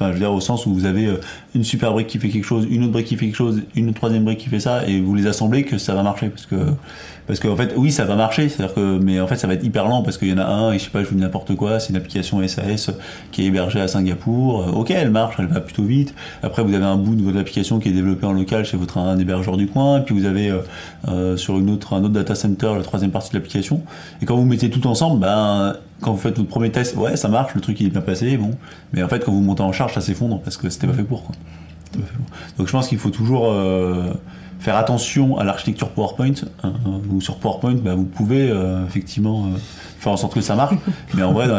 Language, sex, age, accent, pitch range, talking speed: French, male, 30-49, French, 95-115 Hz, 290 wpm